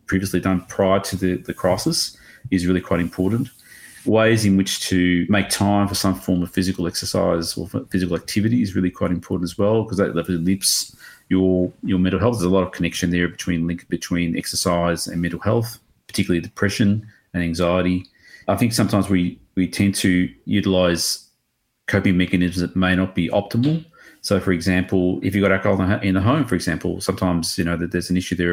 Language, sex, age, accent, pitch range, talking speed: English, male, 30-49, Australian, 90-100 Hz, 190 wpm